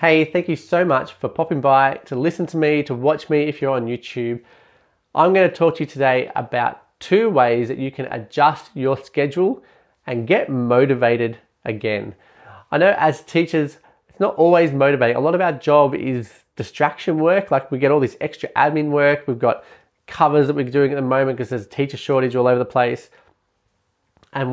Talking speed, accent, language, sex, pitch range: 200 wpm, Australian, English, male, 120-155 Hz